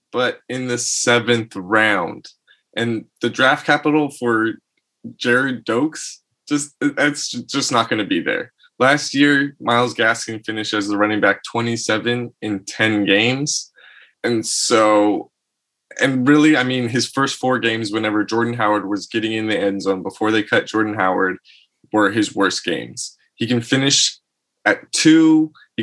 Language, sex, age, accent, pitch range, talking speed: English, male, 20-39, American, 105-130 Hz, 155 wpm